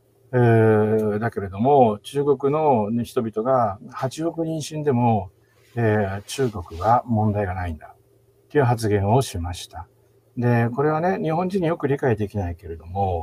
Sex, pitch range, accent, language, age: male, 105-140 Hz, native, Japanese, 60-79